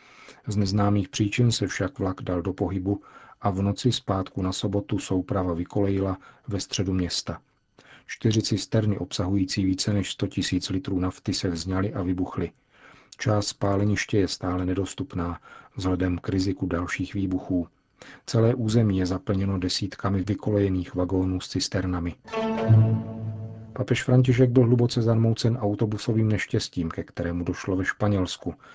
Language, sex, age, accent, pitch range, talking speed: Czech, male, 40-59, native, 95-105 Hz, 135 wpm